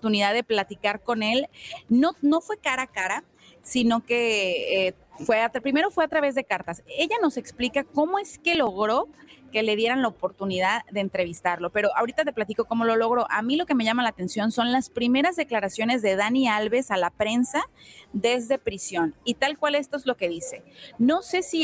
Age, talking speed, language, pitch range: 30-49, 205 wpm, Spanish, 210-275 Hz